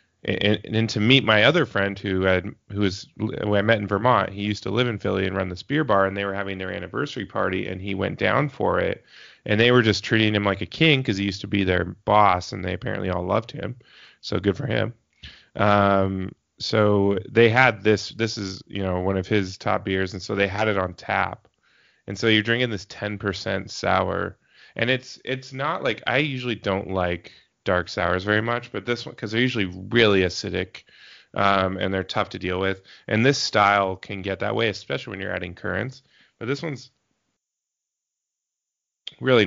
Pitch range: 95-110 Hz